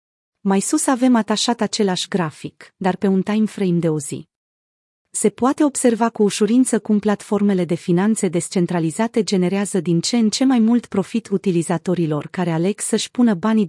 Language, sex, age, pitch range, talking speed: Romanian, female, 30-49, 175-225 Hz, 160 wpm